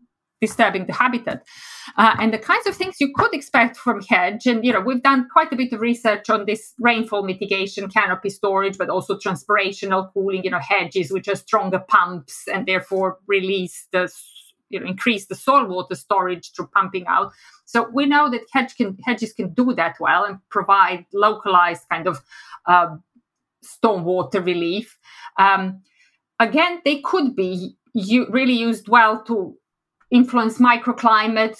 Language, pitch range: English, 190-235 Hz